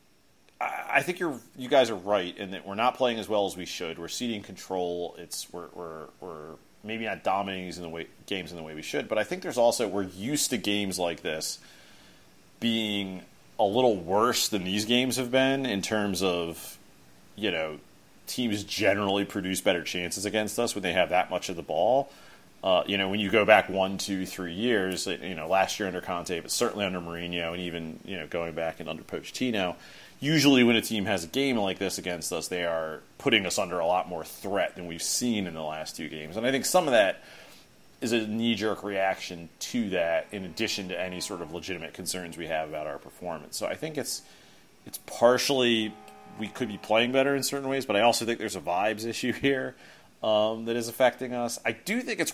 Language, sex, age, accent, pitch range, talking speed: English, male, 30-49, American, 90-120 Hz, 220 wpm